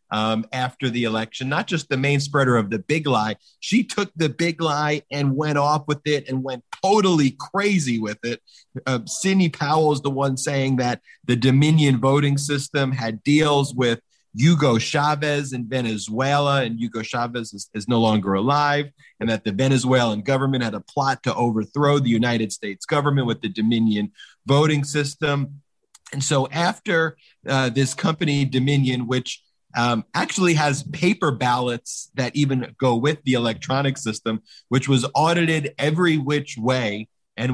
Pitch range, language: 115-145 Hz, English